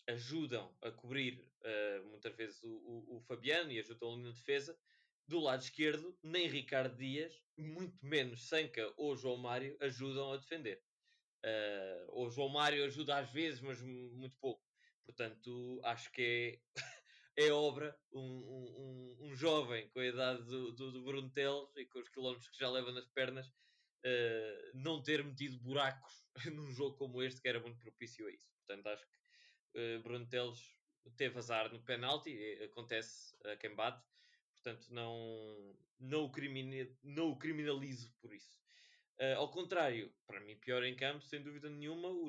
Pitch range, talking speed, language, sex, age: 120-150 Hz, 160 wpm, Portuguese, male, 20-39